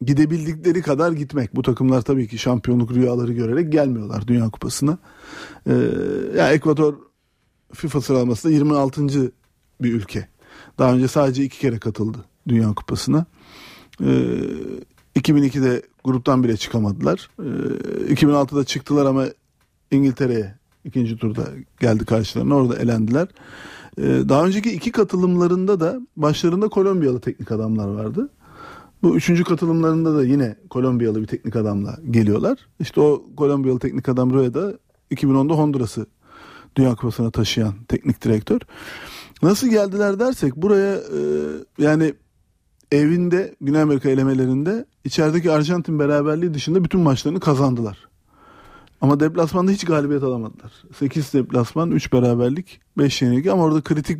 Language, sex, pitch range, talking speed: Turkish, male, 120-155 Hz, 125 wpm